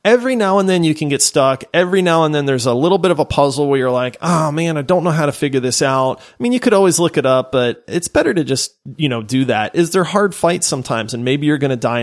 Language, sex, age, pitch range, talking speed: English, male, 30-49, 125-170 Hz, 300 wpm